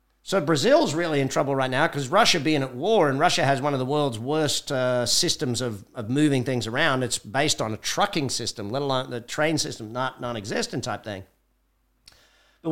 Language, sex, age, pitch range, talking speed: English, male, 50-69, 115-145 Hz, 205 wpm